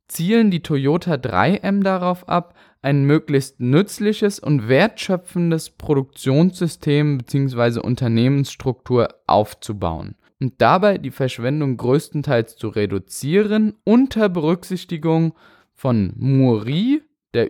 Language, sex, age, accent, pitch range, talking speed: German, male, 10-29, German, 130-170 Hz, 95 wpm